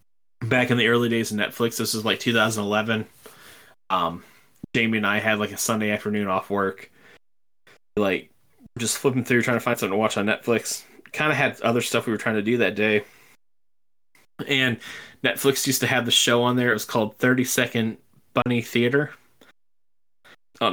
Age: 20-39